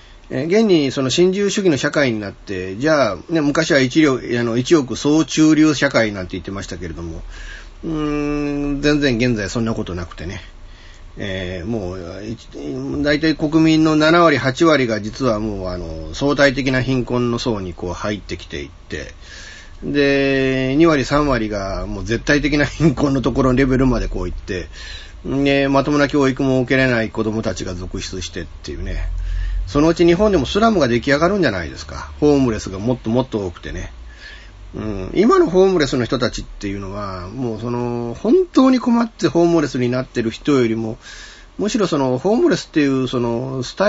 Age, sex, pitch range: 40-59, male, 95-145 Hz